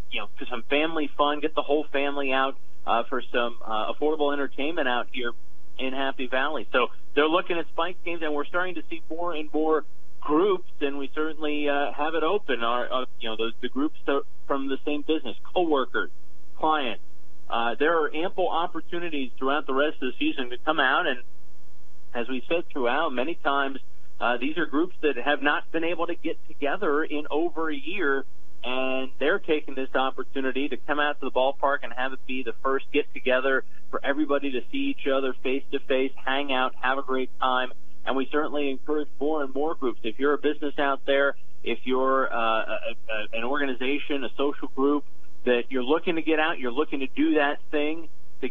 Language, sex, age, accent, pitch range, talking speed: English, male, 40-59, American, 130-150 Hz, 200 wpm